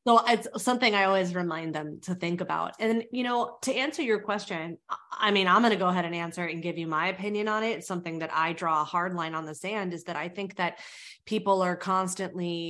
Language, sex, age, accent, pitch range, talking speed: English, female, 20-39, American, 180-235 Hz, 245 wpm